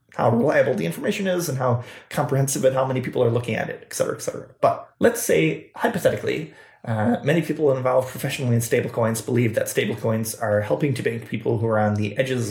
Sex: male